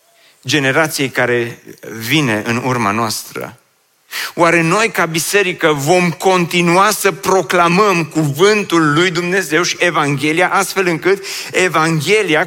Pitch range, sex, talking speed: 160-195 Hz, male, 105 wpm